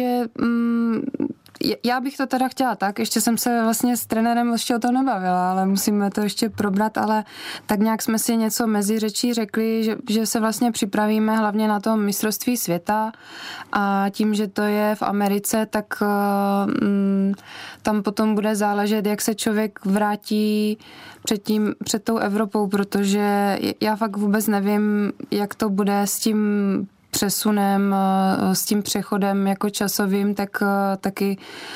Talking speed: 150 wpm